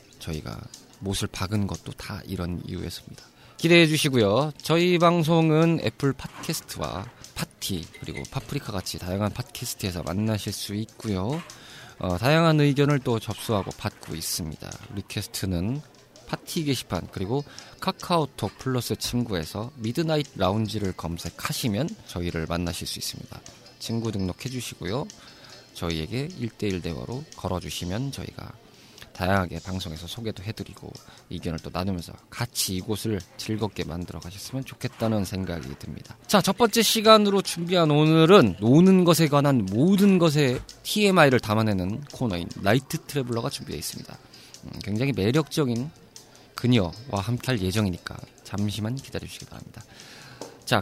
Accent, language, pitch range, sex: native, Korean, 95-140 Hz, male